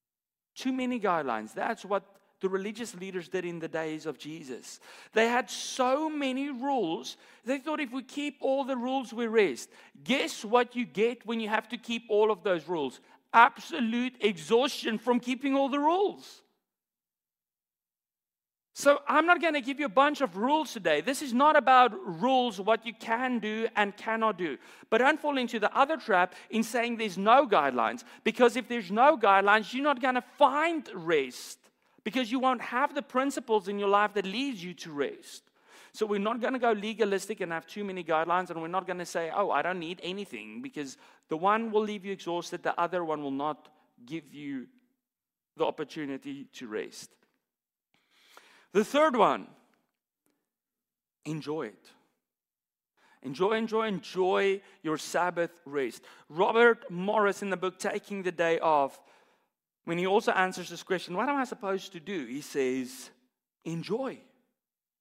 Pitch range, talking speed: 175-255 Hz, 170 wpm